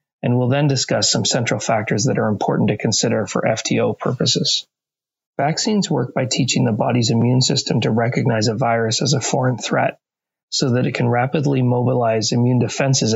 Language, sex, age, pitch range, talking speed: English, male, 30-49, 115-135 Hz, 180 wpm